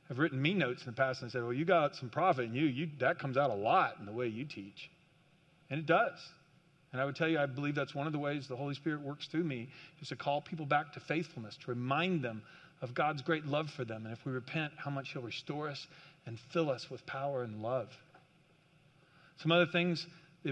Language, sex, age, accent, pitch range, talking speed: English, male, 40-59, American, 140-175 Hz, 245 wpm